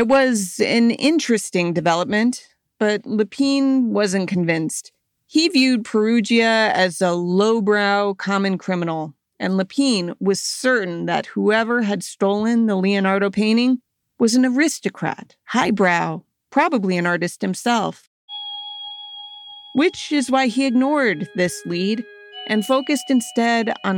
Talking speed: 120 wpm